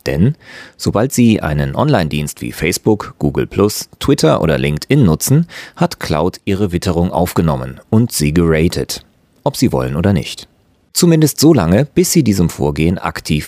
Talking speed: 145 wpm